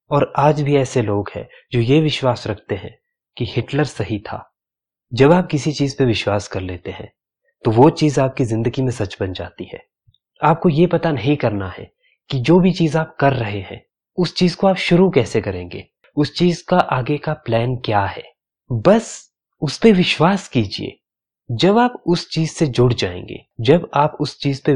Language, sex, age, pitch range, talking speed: Hindi, male, 30-49, 115-155 Hz, 195 wpm